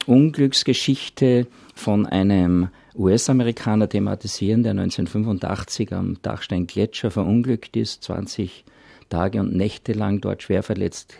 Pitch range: 95-120 Hz